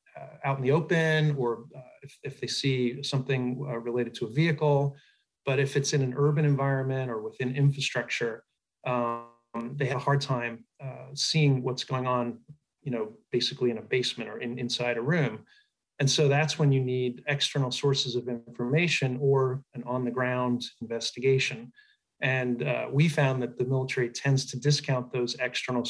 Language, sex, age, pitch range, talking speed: English, male, 30-49, 125-145 Hz, 175 wpm